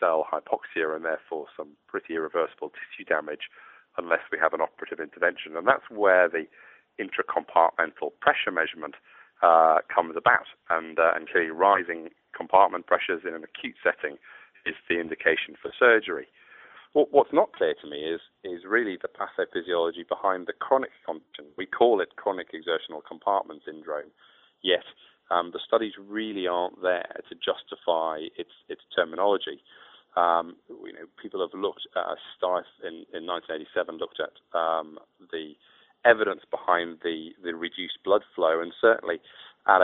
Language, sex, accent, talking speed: English, male, British, 145 wpm